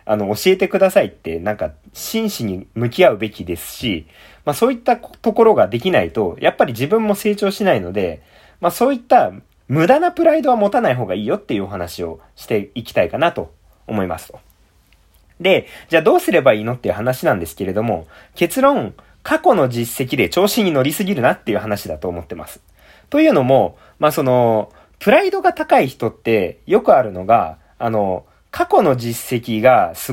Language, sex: Japanese, male